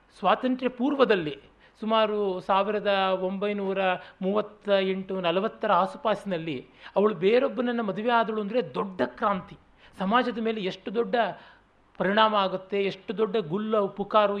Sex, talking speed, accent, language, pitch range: male, 110 wpm, native, Kannada, 170-230 Hz